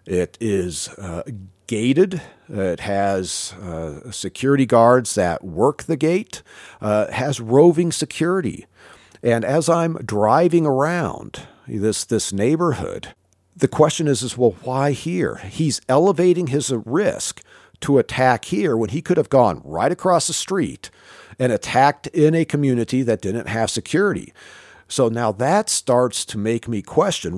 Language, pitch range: English, 100-140 Hz